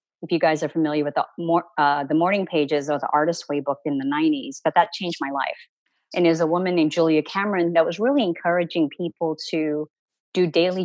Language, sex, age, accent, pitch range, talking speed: English, female, 30-49, American, 155-190 Hz, 220 wpm